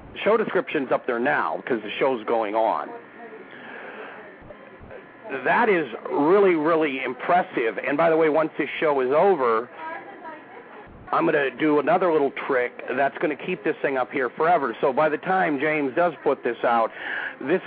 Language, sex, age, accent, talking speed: English, male, 40-59, American, 170 wpm